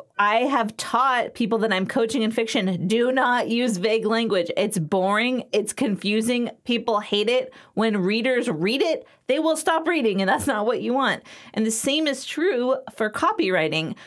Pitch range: 200-260 Hz